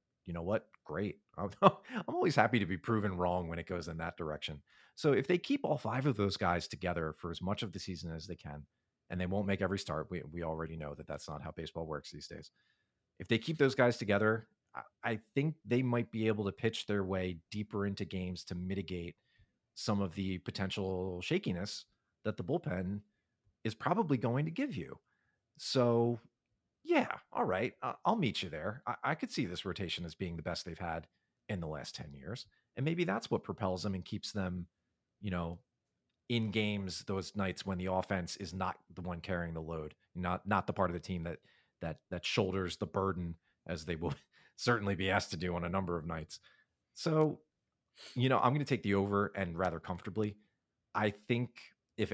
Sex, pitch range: male, 90-110 Hz